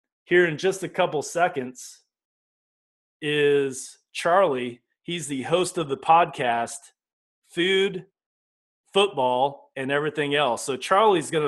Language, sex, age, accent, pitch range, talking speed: English, male, 30-49, American, 130-175 Hz, 115 wpm